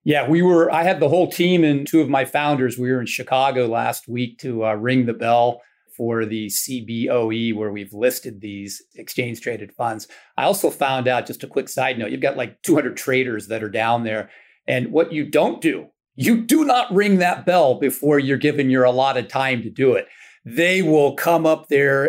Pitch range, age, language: 120-160 Hz, 40-59, English